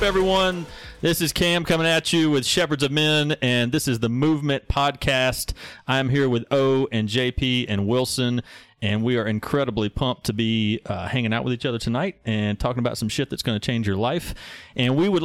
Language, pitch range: English, 110-140 Hz